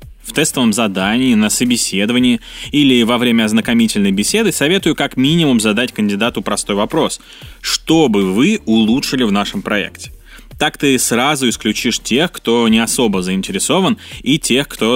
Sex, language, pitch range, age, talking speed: male, Russian, 110-175 Hz, 20-39, 140 wpm